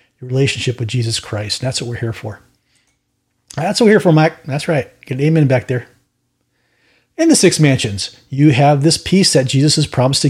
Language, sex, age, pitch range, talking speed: English, male, 40-59, 125-150 Hz, 210 wpm